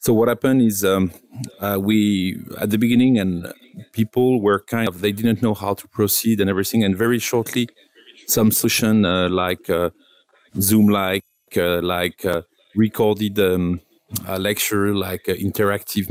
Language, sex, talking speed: English, male, 155 wpm